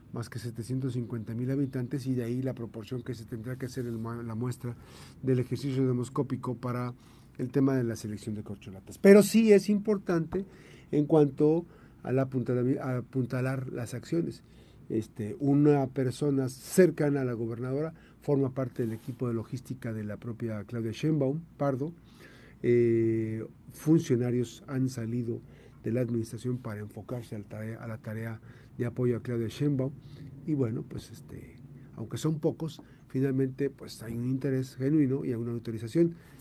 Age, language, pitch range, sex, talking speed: 50-69, Spanish, 115-140 Hz, male, 155 wpm